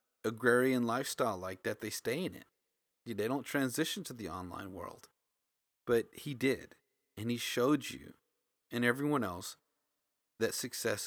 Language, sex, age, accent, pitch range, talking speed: English, male, 30-49, American, 105-135 Hz, 145 wpm